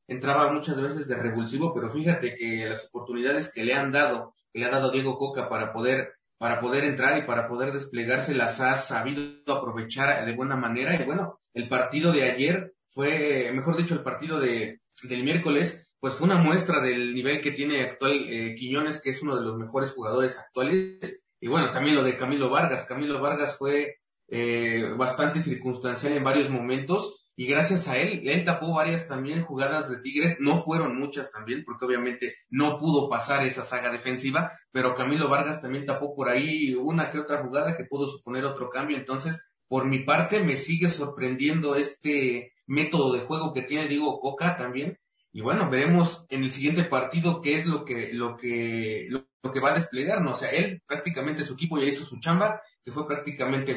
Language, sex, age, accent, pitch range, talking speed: Spanish, male, 30-49, Mexican, 125-150 Hz, 190 wpm